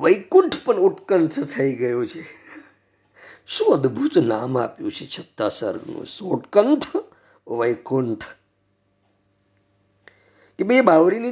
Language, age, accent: Gujarati, 50-69, native